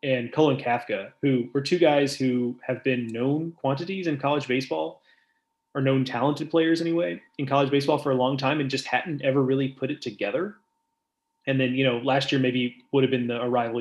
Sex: male